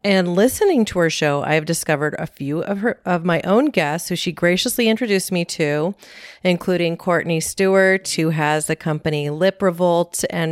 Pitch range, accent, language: 155-190 Hz, American, English